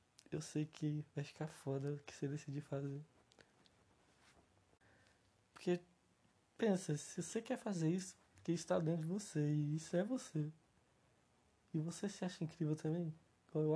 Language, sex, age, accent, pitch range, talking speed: Portuguese, male, 20-39, Brazilian, 140-170 Hz, 155 wpm